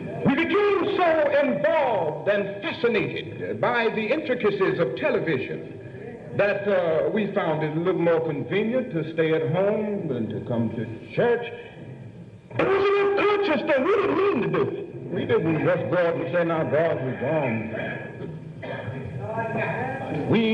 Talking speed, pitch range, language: 145 wpm, 155-225 Hz, English